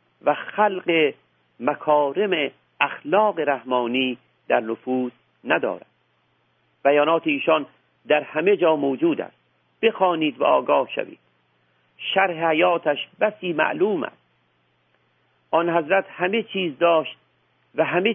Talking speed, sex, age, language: 105 wpm, male, 50-69, Persian